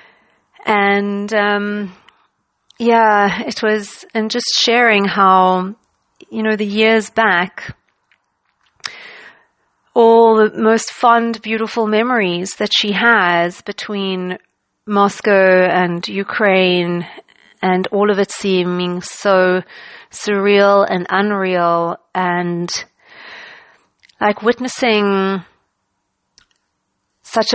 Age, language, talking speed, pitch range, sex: 40-59, English, 85 wpm, 185-220 Hz, female